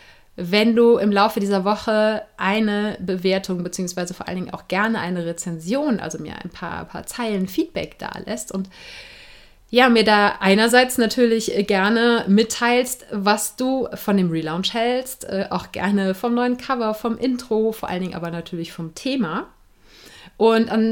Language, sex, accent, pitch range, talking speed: German, female, German, 190-235 Hz, 160 wpm